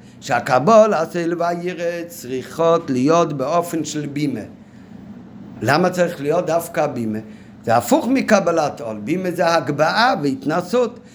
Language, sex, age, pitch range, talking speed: Hebrew, male, 50-69, 155-225 Hz, 115 wpm